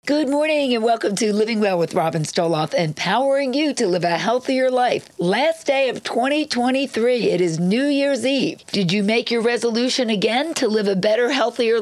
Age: 50-69